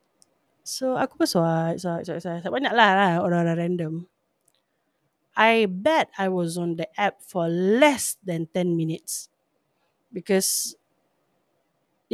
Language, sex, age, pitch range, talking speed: Malay, female, 30-49, 175-230 Hz, 120 wpm